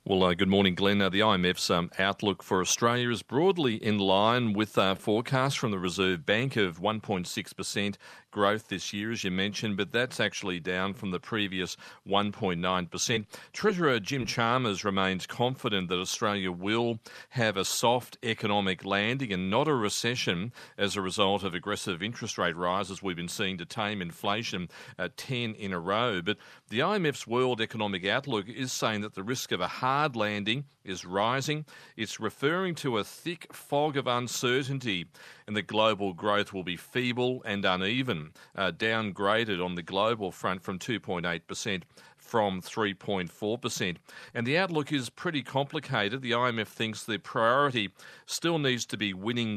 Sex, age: male, 40-59